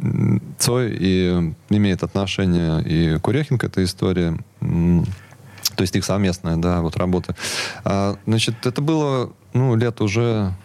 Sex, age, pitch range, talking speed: male, 20-39, 95-115 Hz, 125 wpm